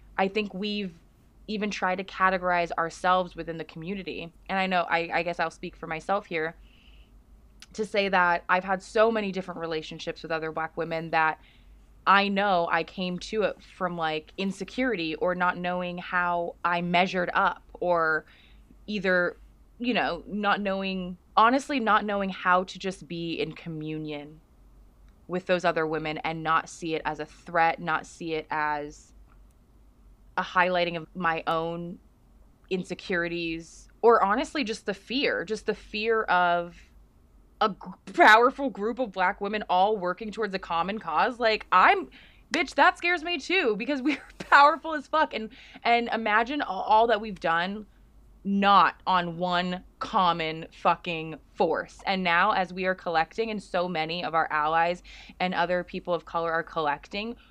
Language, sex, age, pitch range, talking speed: English, female, 20-39, 165-205 Hz, 160 wpm